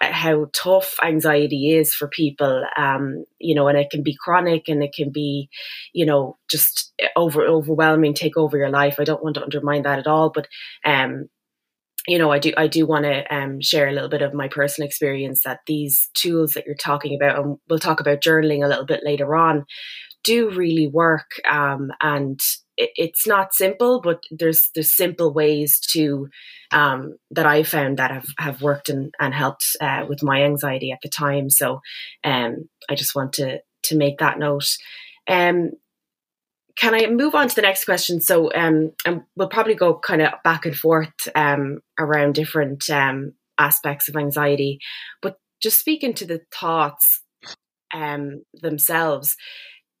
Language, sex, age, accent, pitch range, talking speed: English, female, 20-39, Irish, 145-165 Hz, 180 wpm